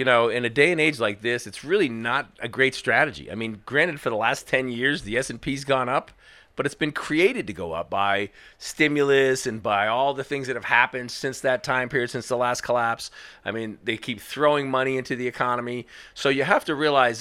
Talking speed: 235 wpm